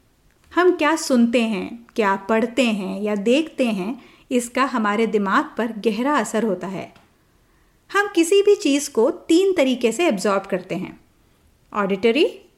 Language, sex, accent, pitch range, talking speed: Hindi, female, native, 215-285 Hz, 145 wpm